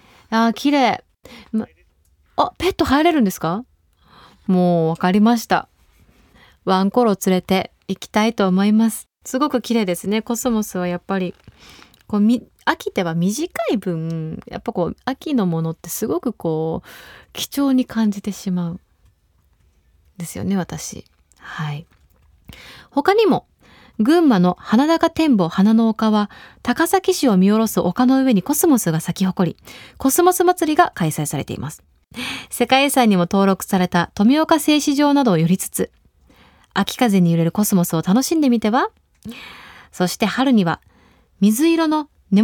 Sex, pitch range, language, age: female, 175-275 Hz, Japanese, 20-39